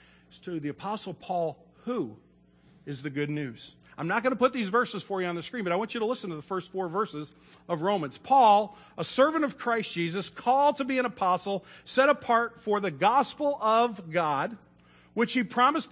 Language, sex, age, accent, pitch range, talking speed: English, male, 50-69, American, 155-220 Hz, 205 wpm